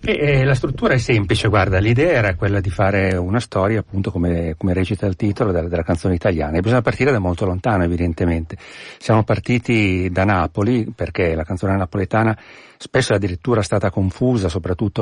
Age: 40-59